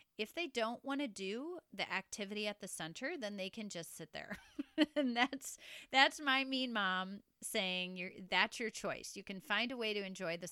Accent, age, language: American, 30-49, English